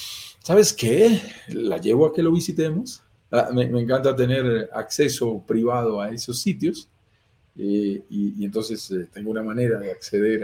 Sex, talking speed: male, 160 wpm